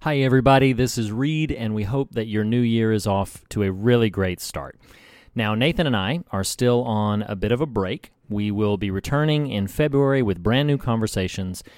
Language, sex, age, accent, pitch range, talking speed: English, male, 40-59, American, 95-130 Hz, 210 wpm